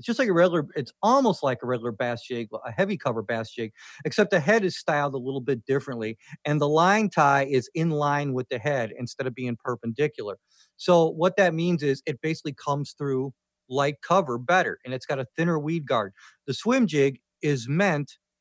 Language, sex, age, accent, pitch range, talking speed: English, male, 40-59, American, 130-165 Hz, 210 wpm